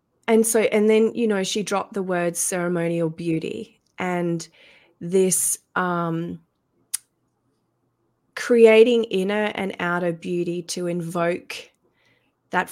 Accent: Australian